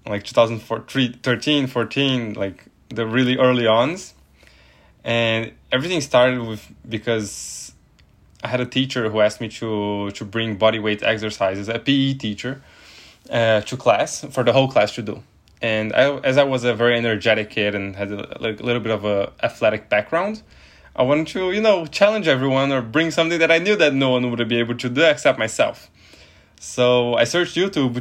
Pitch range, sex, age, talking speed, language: 105-130 Hz, male, 10-29, 180 wpm, English